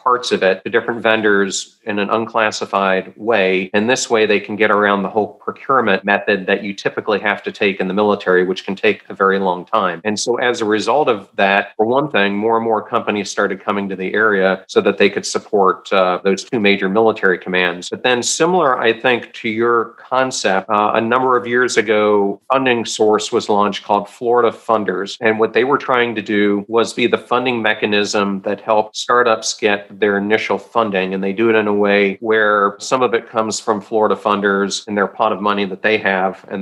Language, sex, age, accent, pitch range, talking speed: English, male, 40-59, American, 100-115 Hz, 215 wpm